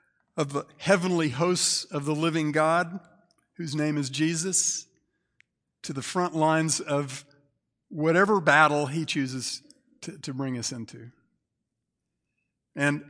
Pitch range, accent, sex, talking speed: 130-165 Hz, American, male, 125 wpm